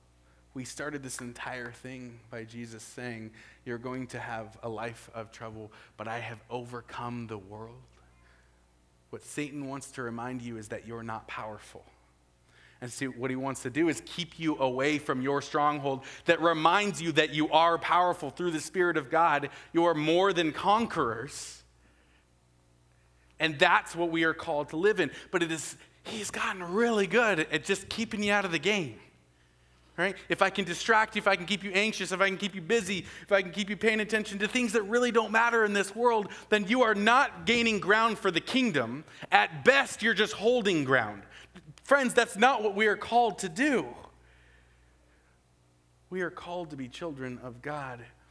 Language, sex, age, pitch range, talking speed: English, male, 30-49, 115-190 Hz, 190 wpm